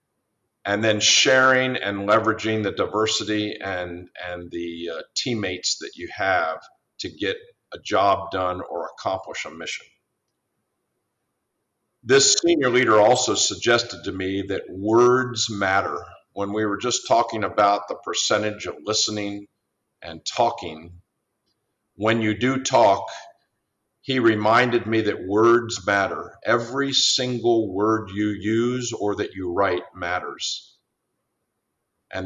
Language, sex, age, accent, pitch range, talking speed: English, male, 50-69, American, 95-115 Hz, 125 wpm